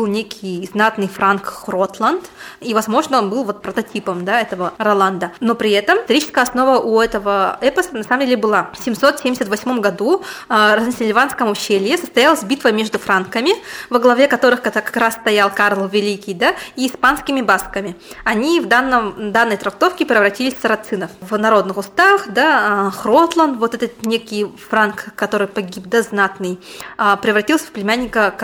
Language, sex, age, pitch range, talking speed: Russian, female, 20-39, 205-270 Hz, 155 wpm